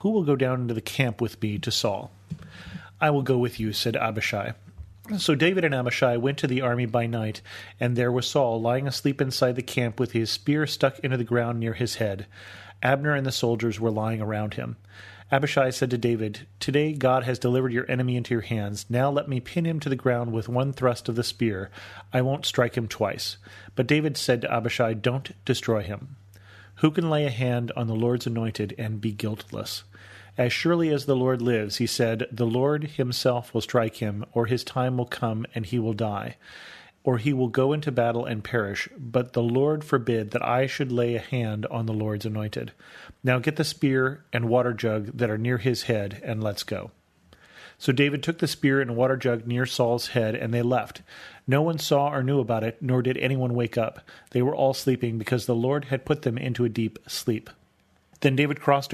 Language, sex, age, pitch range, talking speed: English, male, 30-49, 115-135 Hz, 215 wpm